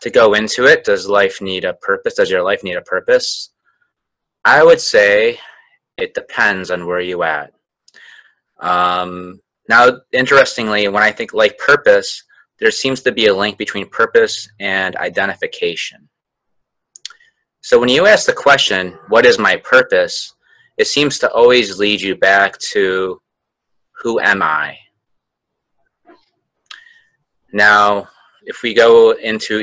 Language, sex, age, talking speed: English, male, 30-49, 140 wpm